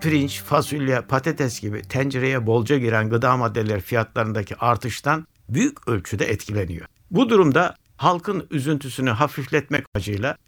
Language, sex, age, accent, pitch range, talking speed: Turkish, male, 60-79, native, 115-175 Hz, 115 wpm